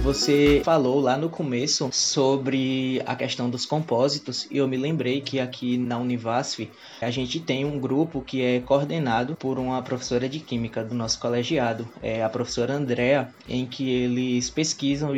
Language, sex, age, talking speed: Portuguese, male, 20-39, 160 wpm